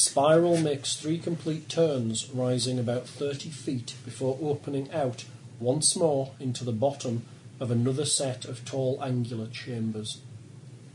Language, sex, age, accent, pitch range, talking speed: English, male, 40-59, British, 125-140 Hz, 130 wpm